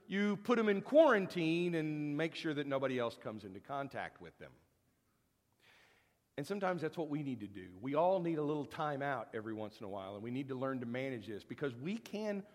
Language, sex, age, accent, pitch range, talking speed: English, male, 50-69, American, 125-185 Hz, 225 wpm